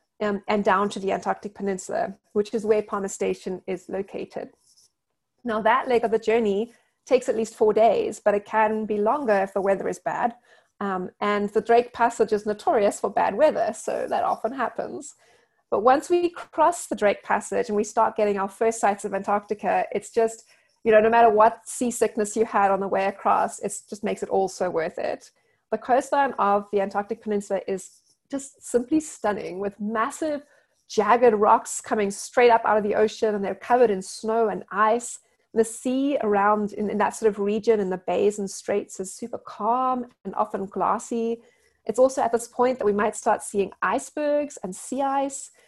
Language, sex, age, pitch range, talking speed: English, female, 30-49, 205-245 Hz, 195 wpm